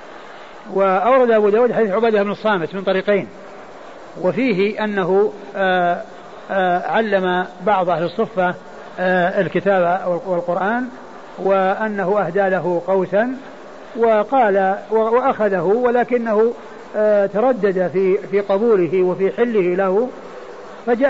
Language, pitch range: Arabic, 185-215 Hz